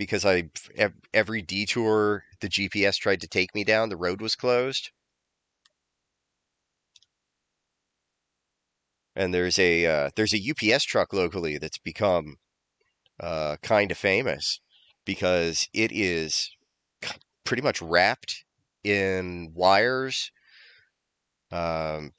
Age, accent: 30-49, American